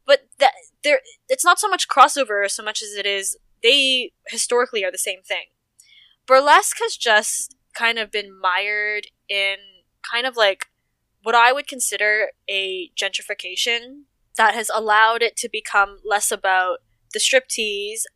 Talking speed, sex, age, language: 150 wpm, female, 10-29, English